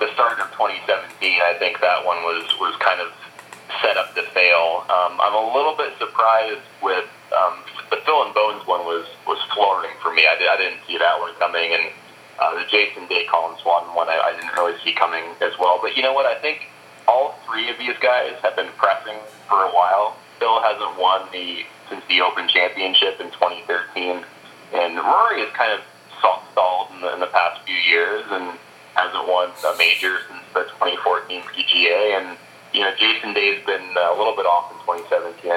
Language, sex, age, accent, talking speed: English, male, 30-49, American, 190 wpm